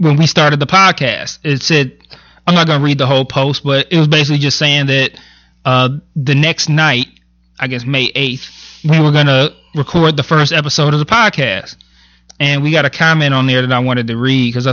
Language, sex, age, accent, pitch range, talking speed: English, male, 20-39, American, 130-165 Hz, 210 wpm